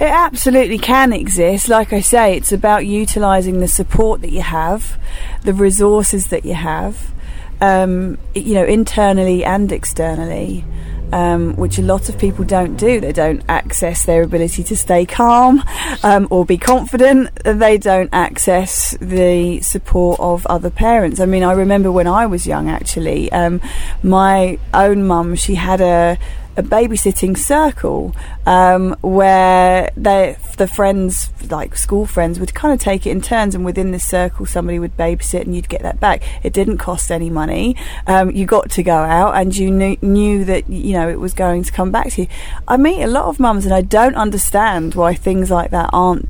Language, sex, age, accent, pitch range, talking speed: English, female, 30-49, British, 175-215 Hz, 185 wpm